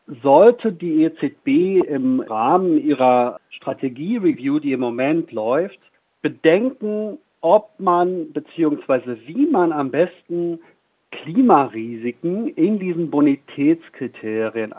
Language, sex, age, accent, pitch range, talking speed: German, male, 50-69, German, 135-185 Hz, 95 wpm